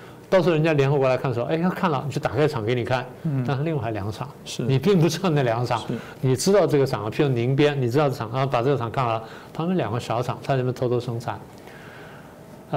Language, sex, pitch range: Chinese, male, 120-150 Hz